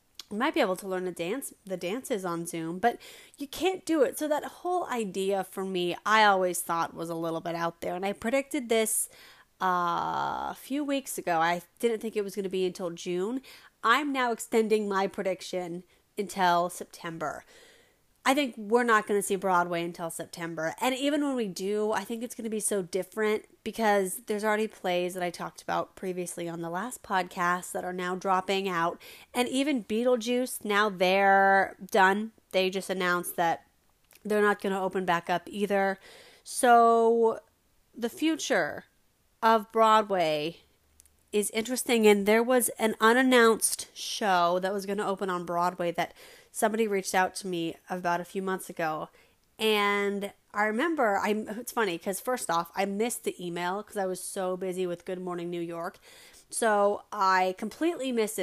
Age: 30-49